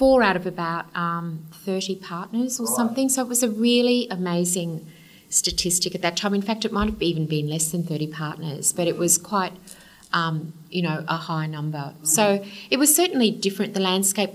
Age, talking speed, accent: 30-49, 195 wpm, Australian